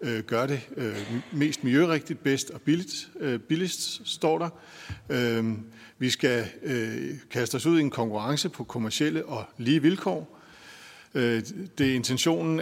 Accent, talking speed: native, 120 wpm